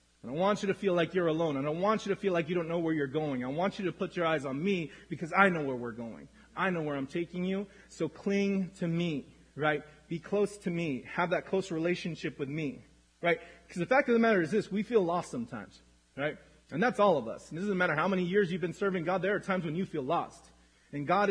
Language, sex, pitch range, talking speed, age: English, male, 150-200 Hz, 270 wpm, 30-49